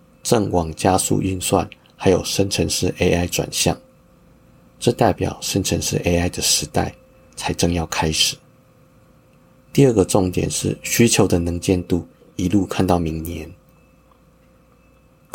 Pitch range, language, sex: 85-105 Hz, Chinese, male